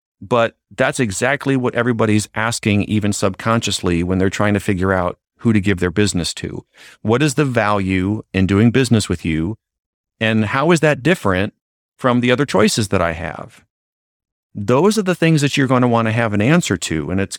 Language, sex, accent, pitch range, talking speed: English, male, American, 95-120 Hz, 195 wpm